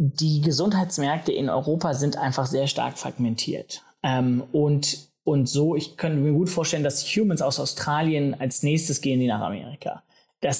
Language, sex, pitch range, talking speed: German, male, 140-170 Hz, 165 wpm